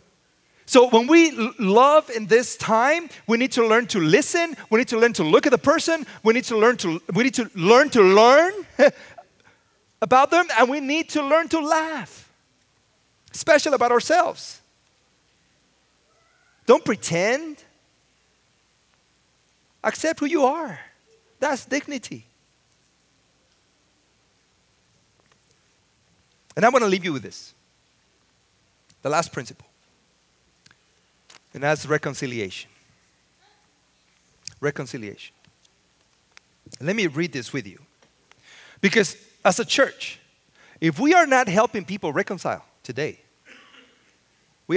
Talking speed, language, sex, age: 115 wpm, English, male, 40-59